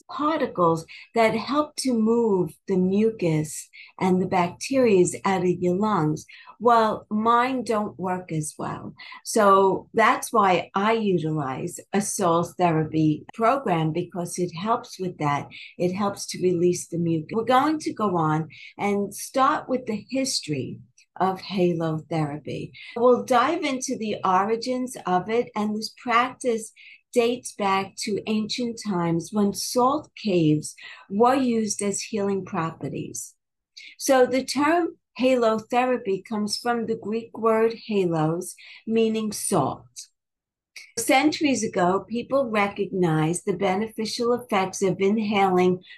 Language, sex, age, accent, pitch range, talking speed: English, female, 50-69, American, 180-240 Hz, 125 wpm